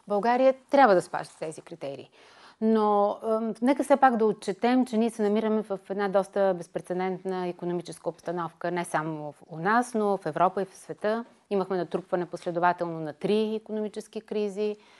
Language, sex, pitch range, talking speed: Bulgarian, female, 170-220 Hz, 170 wpm